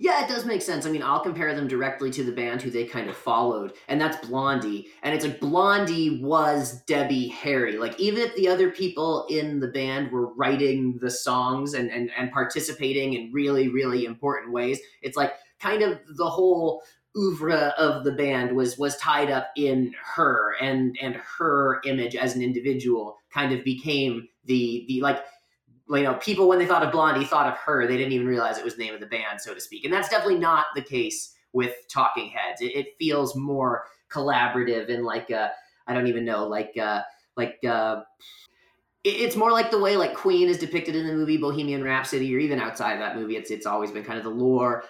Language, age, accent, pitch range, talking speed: English, 30-49, American, 125-155 Hz, 215 wpm